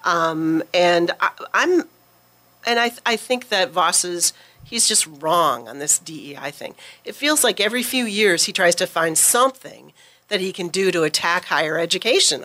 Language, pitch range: English, 170-220 Hz